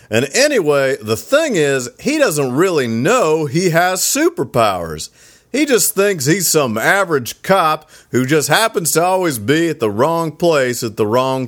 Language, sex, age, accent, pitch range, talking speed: English, male, 40-59, American, 130-190 Hz, 165 wpm